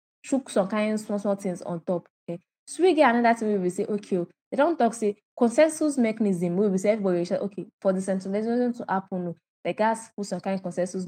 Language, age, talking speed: English, 10-29, 205 wpm